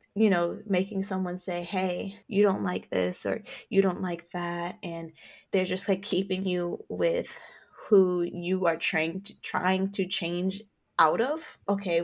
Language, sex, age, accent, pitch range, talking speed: English, female, 10-29, American, 170-205 Hz, 160 wpm